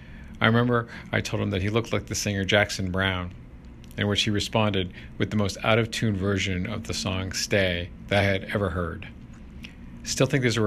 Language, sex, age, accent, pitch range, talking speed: English, male, 50-69, American, 90-105 Hz, 190 wpm